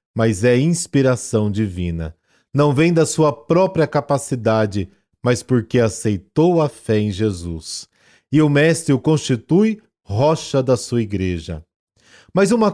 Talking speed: 130 wpm